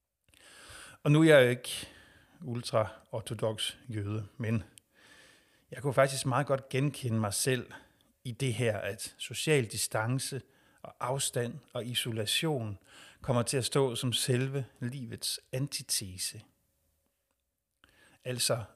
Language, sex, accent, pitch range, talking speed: Danish, male, native, 110-130 Hz, 115 wpm